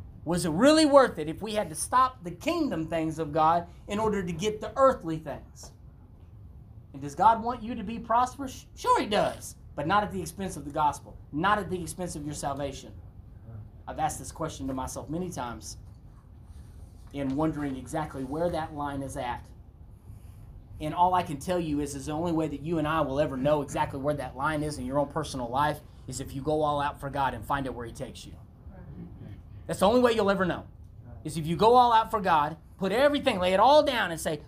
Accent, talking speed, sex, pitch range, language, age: American, 225 wpm, male, 135-225 Hz, English, 30-49